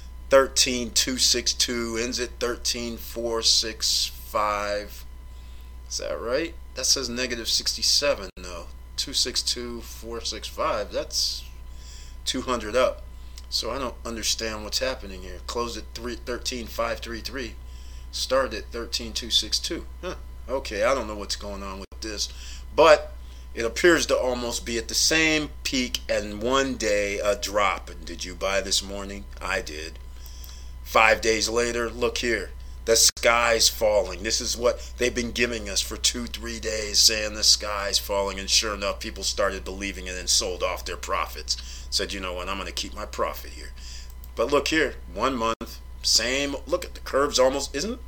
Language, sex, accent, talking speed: English, male, American, 155 wpm